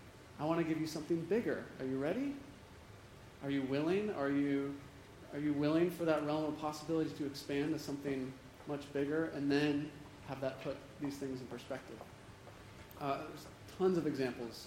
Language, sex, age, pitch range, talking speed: English, male, 30-49, 125-150 Hz, 175 wpm